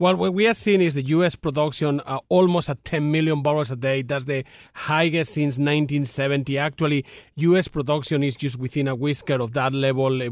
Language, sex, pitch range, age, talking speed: English, male, 135-155 Hz, 40-59, 200 wpm